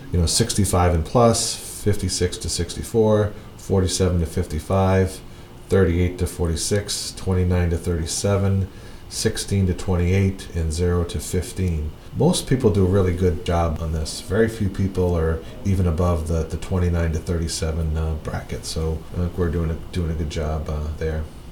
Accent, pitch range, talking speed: American, 85-100 Hz, 160 wpm